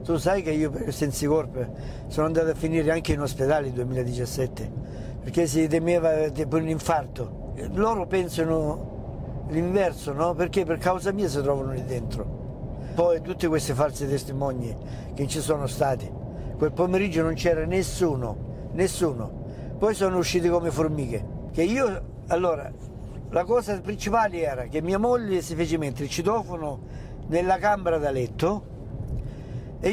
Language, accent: Italian, native